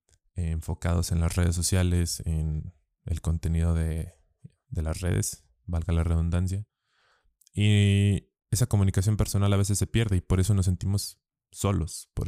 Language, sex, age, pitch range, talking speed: Spanish, male, 20-39, 85-95 Hz, 145 wpm